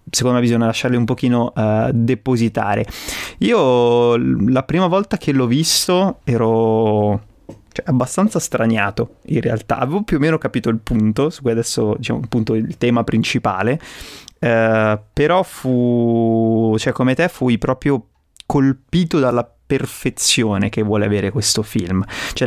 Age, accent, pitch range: 20-39, native, 115-135 Hz